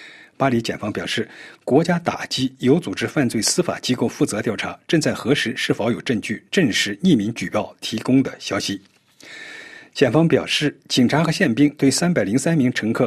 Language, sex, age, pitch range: Chinese, male, 50-69, 125-160 Hz